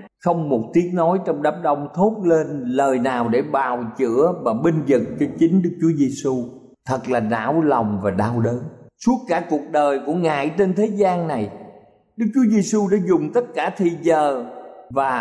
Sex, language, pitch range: male, Thai, 145-225 Hz